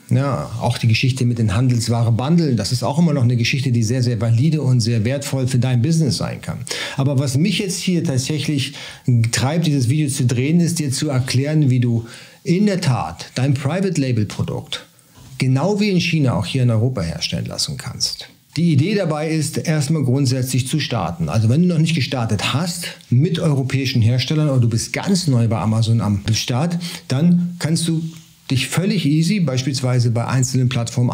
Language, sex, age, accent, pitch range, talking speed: German, male, 50-69, German, 120-160 Hz, 185 wpm